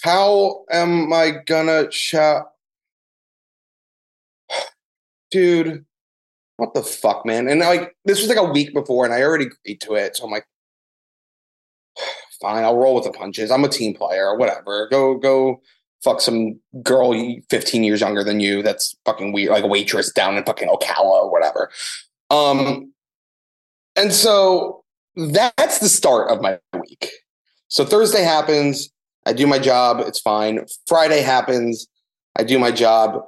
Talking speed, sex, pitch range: 155 wpm, male, 125-180 Hz